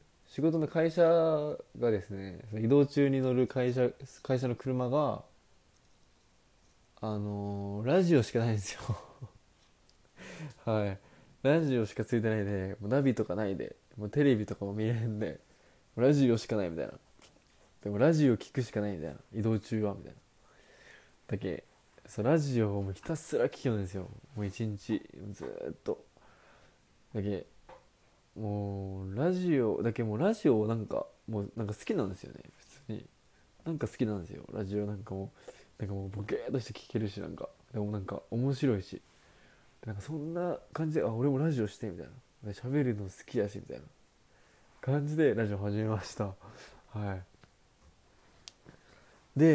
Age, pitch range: 20-39, 100-135 Hz